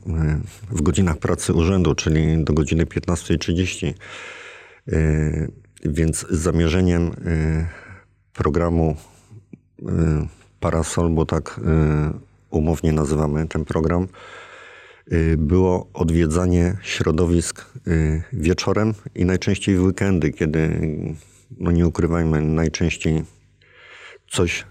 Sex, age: male, 50-69